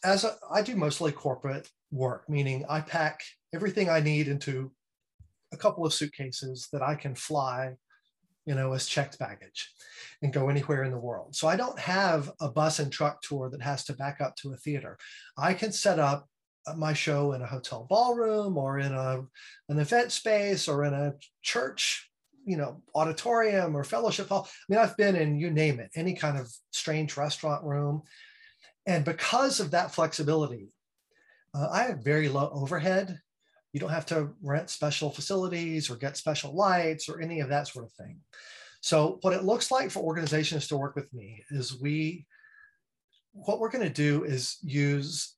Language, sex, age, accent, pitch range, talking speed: English, male, 30-49, American, 140-185 Hz, 185 wpm